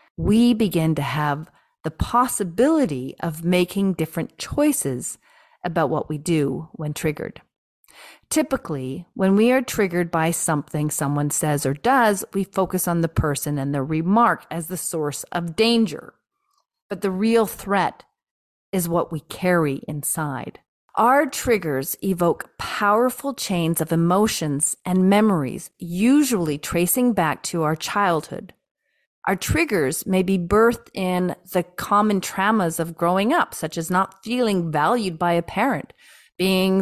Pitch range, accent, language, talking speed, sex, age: 165-215 Hz, American, English, 140 wpm, female, 40-59